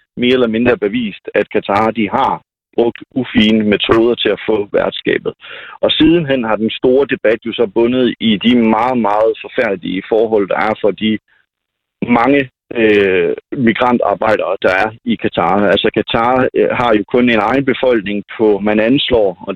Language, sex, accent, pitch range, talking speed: Danish, male, native, 105-130 Hz, 165 wpm